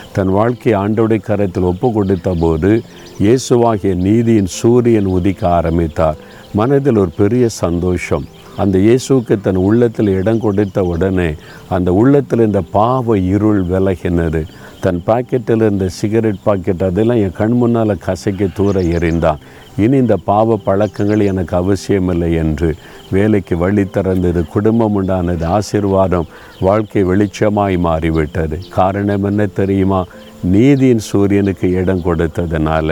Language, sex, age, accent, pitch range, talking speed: Tamil, male, 50-69, native, 90-105 Hz, 115 wpm